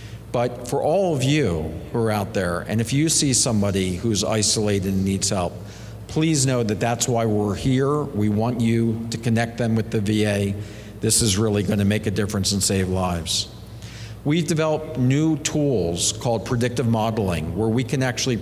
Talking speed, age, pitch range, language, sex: 185 wpm, 50-69, 105-130 Hz, English, male